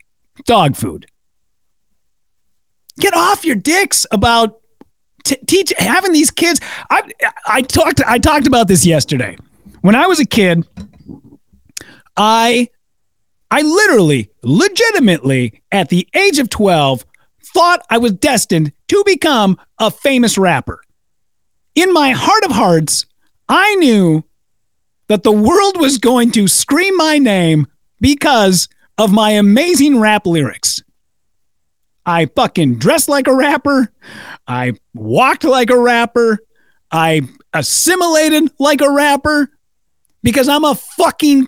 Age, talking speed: 40-59, 125 wpm